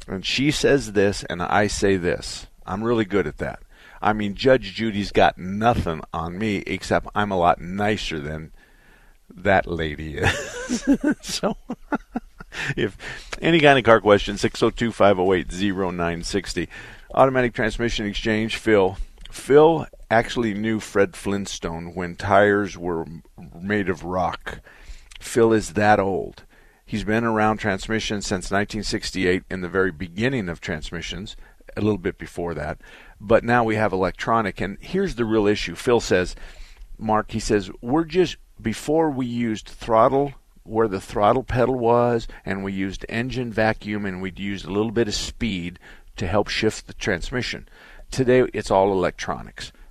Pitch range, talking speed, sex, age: 95-115 Hz, 155 wpm, male, 50-69